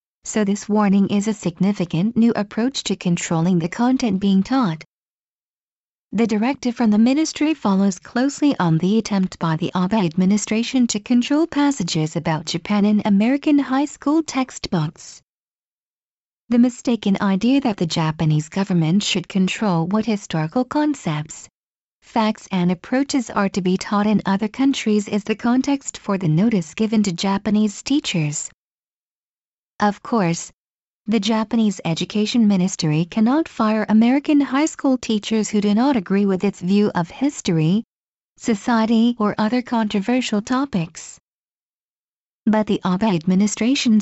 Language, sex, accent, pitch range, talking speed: English, female, American, 185-240 Hz, 135 wpm